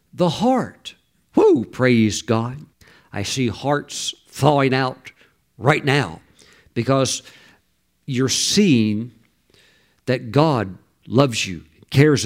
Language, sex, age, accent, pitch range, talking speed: English, male, 50-69, American, 115-150 Hz, 100 wpm